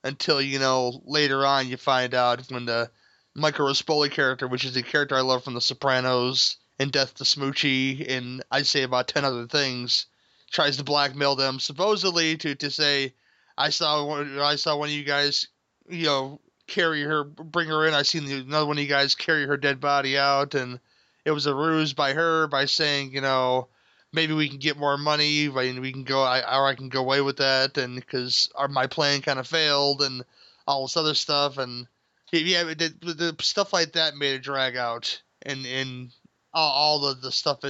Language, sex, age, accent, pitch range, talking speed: English, male, 30-49, American, 130-150 Hz, 200 wpm